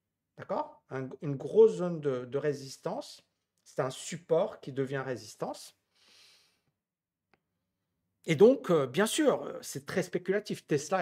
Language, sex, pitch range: French, male, 140-180 Hz